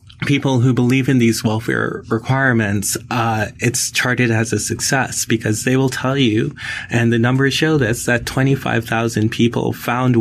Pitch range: 110-130 Hz